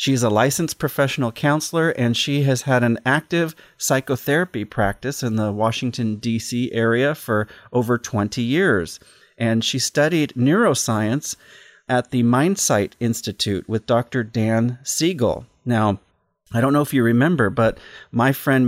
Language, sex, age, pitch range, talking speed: English, male, 40-59, 115-145 Hz, 140 wpm